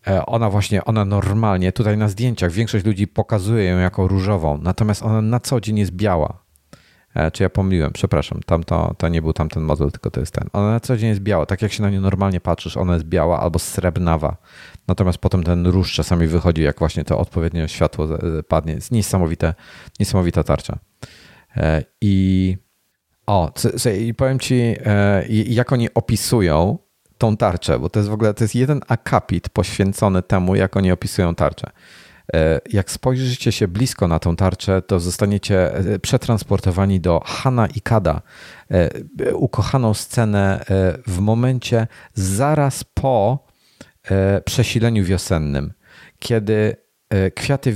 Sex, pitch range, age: male, 90-110 Hz, 40-59